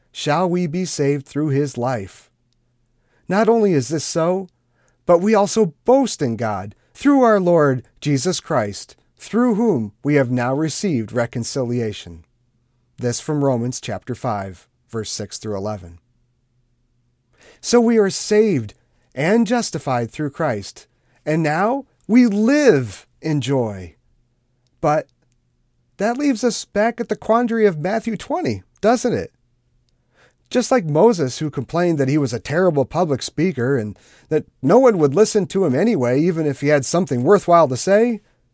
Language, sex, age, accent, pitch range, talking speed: English, male, 40-59, American, 120-180 Hz, 150 wpm